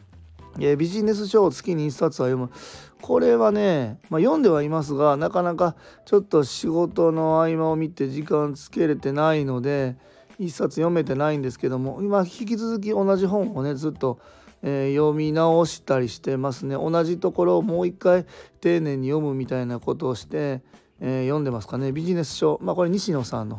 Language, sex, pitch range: Japanese, male, 135-165 Hz